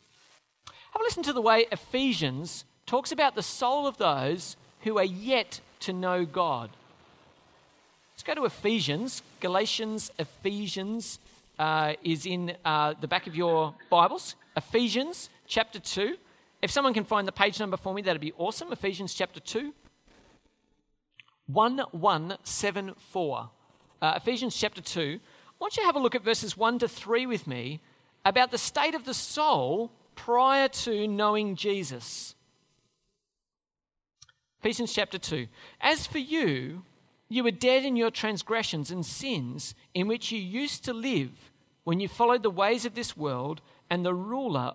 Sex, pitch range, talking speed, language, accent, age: male, 170-235 Hz, 150 wpm, English, Australian, 40-59